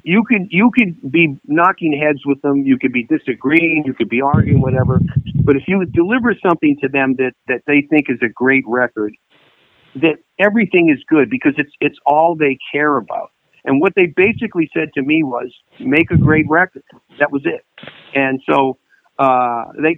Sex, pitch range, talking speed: male, 120-160 Hz, 190 wpm